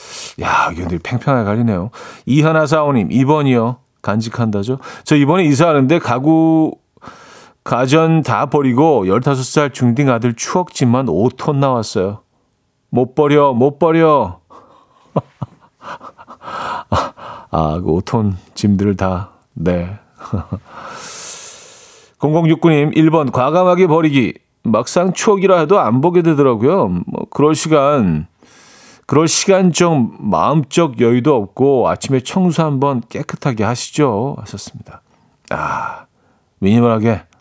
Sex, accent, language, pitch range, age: male, native, Korean, 115-160 Hz, 40-59